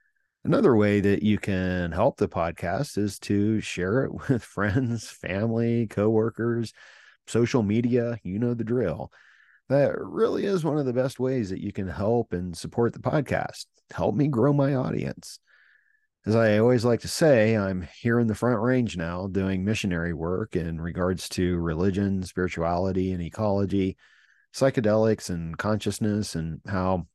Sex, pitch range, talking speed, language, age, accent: male, 90-115 Hz, 155 wpm, English, 40-59, American